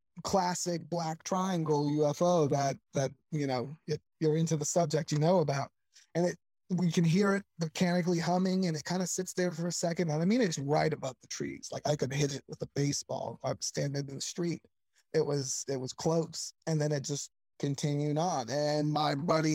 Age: 20-39